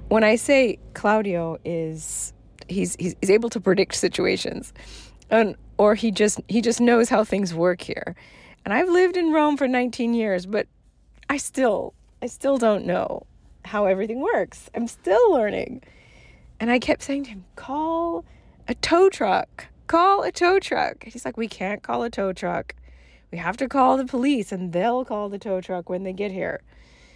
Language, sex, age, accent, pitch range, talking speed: English, female, 40-59, American, 190-265 Hz, 185 wpm